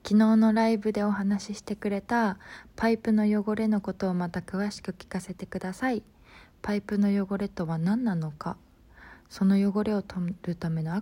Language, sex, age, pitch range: Japanese, female, 20-39, 175-210 Hz